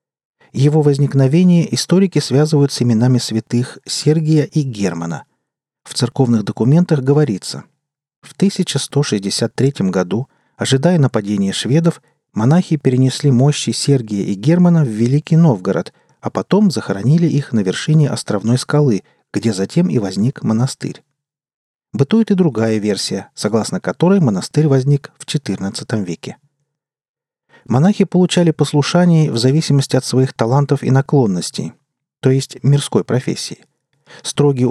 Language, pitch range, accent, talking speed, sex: Russian, 115-150 Hz, native, 120 wpm, male